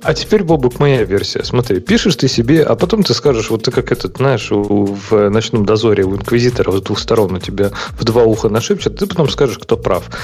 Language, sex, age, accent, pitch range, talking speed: Russian, male, 30-49, native, 105-150 Hz, 225 wpm